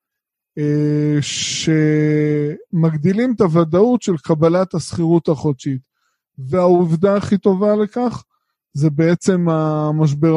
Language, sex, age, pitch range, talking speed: Hebrew, male, 20-39, 155-185 Hz, 85 wpm